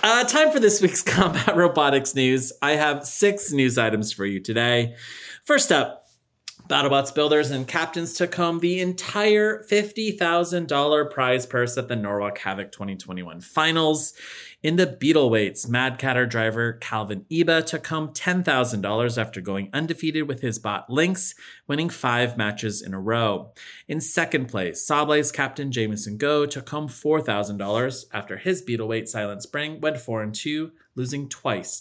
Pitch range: 115-160 Hz